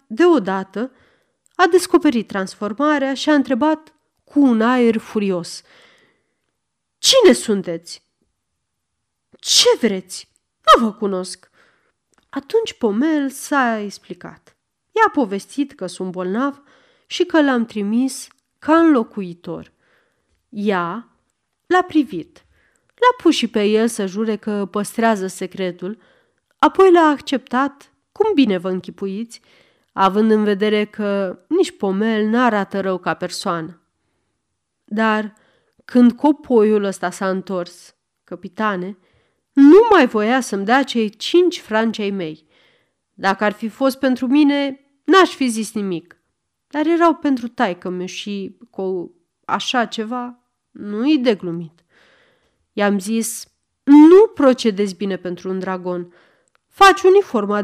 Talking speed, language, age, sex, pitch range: 115 wpm, Romanian, 30-49, female, 195-280 Hz